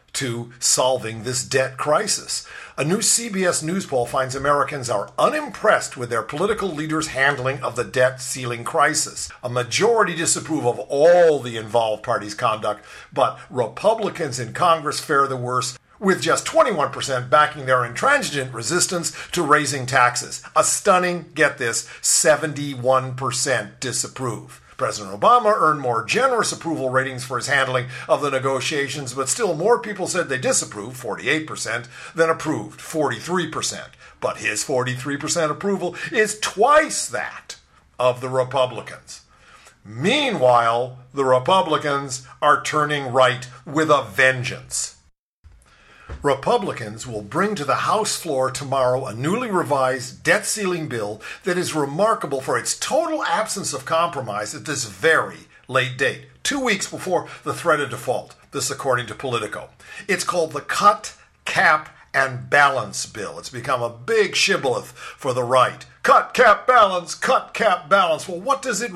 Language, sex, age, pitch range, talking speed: English, male, 50-69, 125-170 Hz, 145 wpm